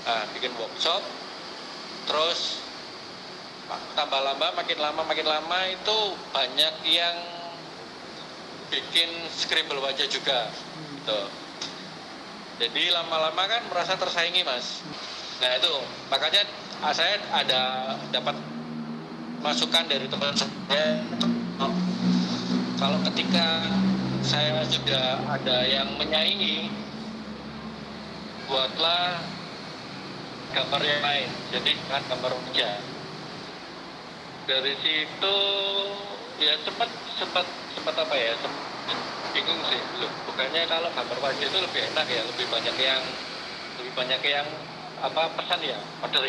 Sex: male